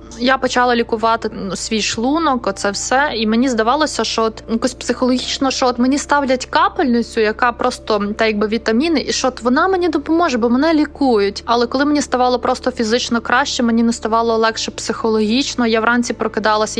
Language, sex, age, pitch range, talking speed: Ukrainian, female, 20-39, 225-255 Hz, 170 wpm